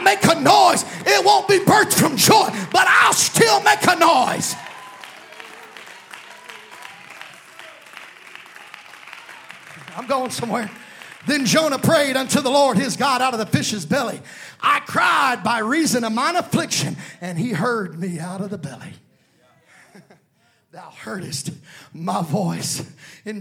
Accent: American